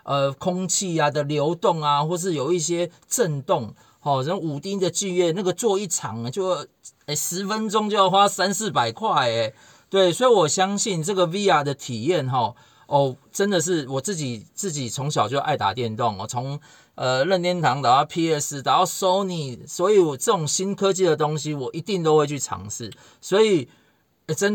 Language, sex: Chinese, male